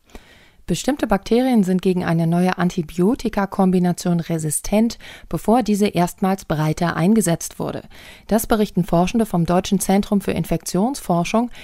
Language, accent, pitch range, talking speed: German, German, 170-210 Hz, 115 wpm